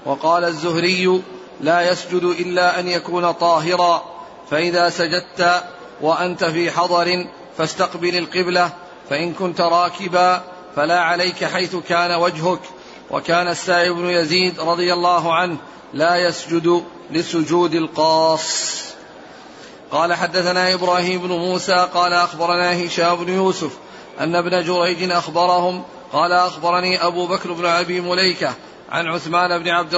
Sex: male